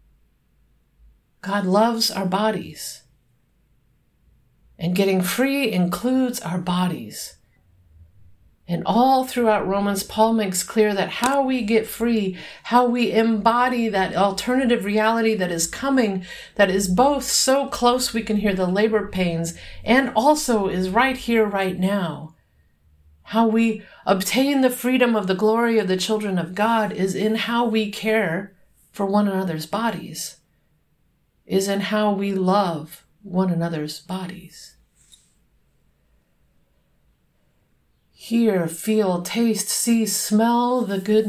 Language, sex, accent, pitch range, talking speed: English, female, American, 175-225 Hz, 125 wpm